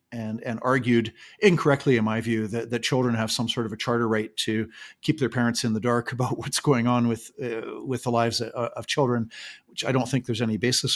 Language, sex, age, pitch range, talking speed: English, male, 50-69, 115-140 Hz, 235 wpm